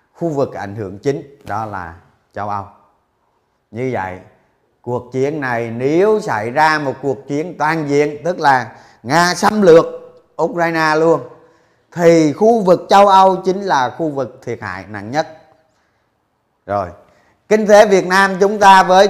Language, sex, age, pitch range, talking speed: Vietnamese, male, 30-49, 130-175 Hz, 155 wpm